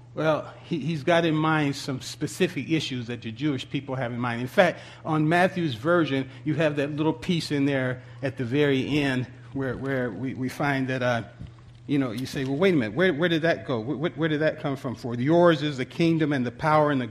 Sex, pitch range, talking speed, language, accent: male, 120-155 Hz, 240 wpm, English, American